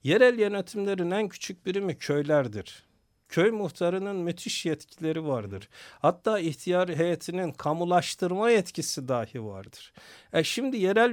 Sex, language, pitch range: male, Turkish, 140-190 Hz